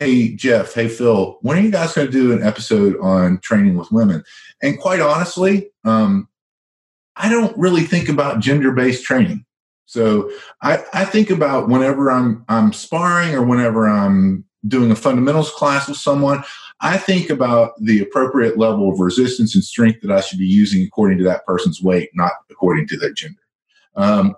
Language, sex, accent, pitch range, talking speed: English, male, American, 105-175 Hz, 175 wpm